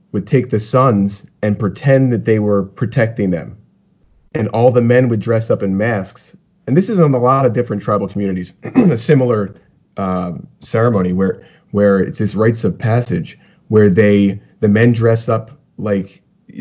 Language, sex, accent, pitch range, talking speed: English, male, American, 100-125 Hz, 175 wpm